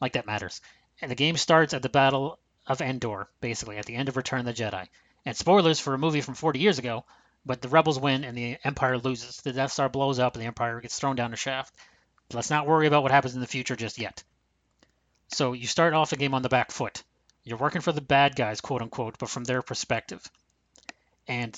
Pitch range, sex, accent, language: 130-170 Hz, male, American, English